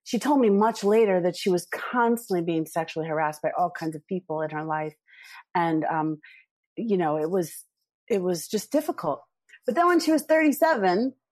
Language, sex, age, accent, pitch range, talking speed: English, female, 40-59, American, 165-235 Hz, 190 wpm